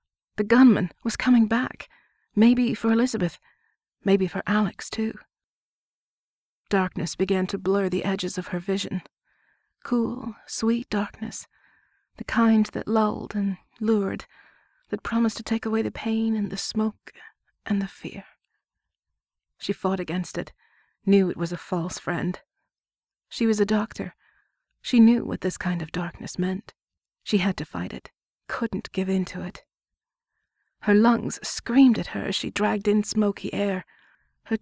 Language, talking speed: English, 150 wpm